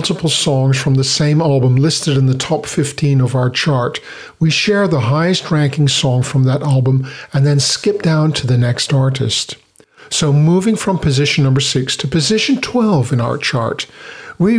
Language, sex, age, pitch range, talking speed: English, male, 50-69, 135-190 Hz, 180 wpm